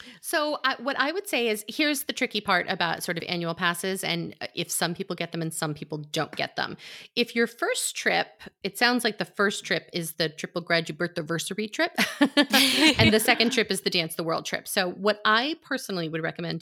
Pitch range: 175-240 Hz